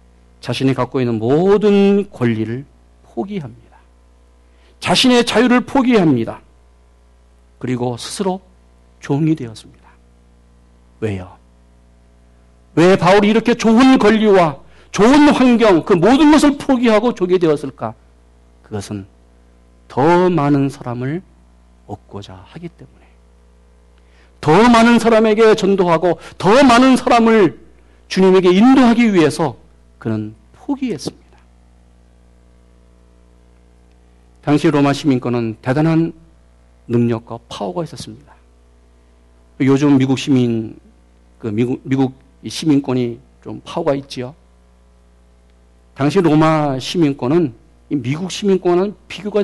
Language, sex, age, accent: Korean, male, 50-69, native